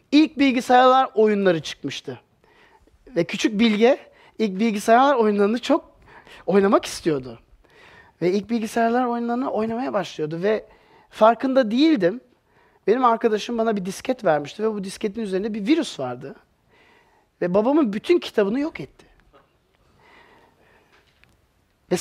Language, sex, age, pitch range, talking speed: Turkish, male, 40-59, 170-260 Hz, 115 wpm